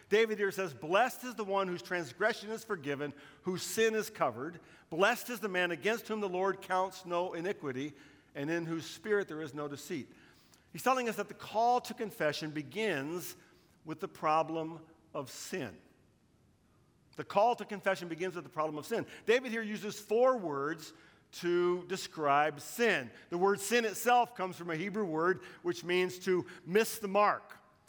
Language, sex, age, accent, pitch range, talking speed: English, male, 50-69, American, 160-205 Hz, 175 wpm